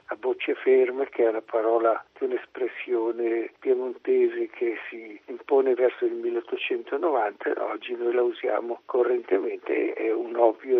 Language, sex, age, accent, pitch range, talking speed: Italian, male, 60-79, native, 355-400 Hz, 135 wpm